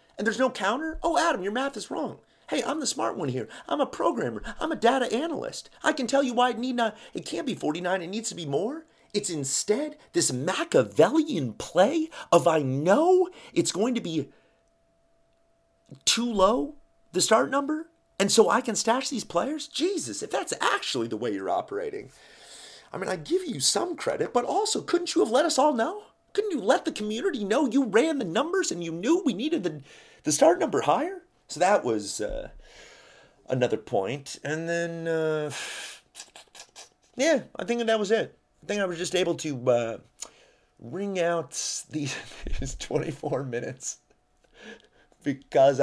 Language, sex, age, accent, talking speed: English, male, 30-49, American, 180 wpm